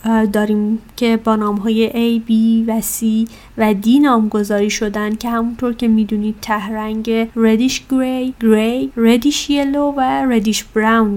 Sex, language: female, Persian